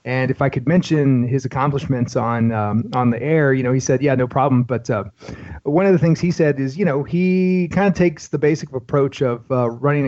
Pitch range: 120-150 Hz